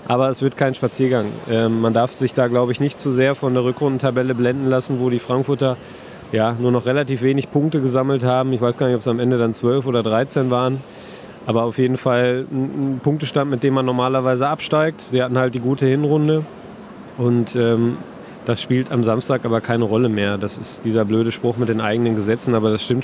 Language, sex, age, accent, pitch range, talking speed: German, male, 20-39, German, 115-135 Hz, 215 wpm